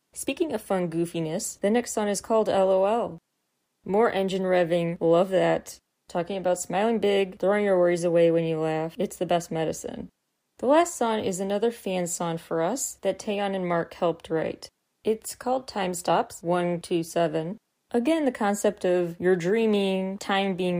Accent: American